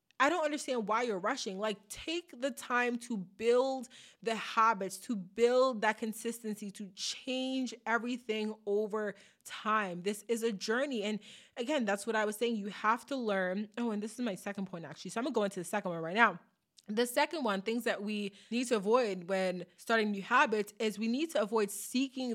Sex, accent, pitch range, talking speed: female, American, 195-235 Hz, 205 wpm